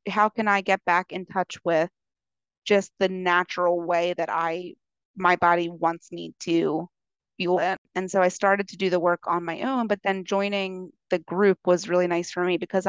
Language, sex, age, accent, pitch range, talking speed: English, female, 30-49, American, 170-185 Hz, 200 wpm